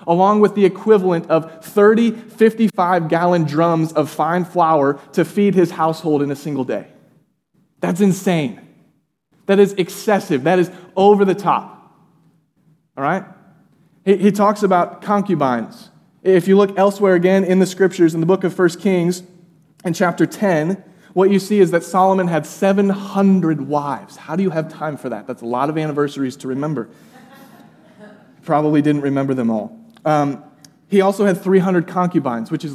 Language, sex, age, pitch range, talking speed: English, male, 20-39, 160-200 Hz, 165 wpm